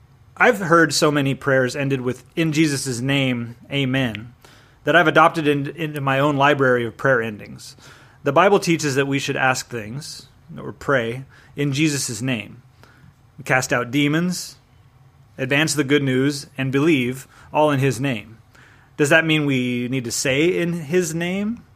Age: 30-49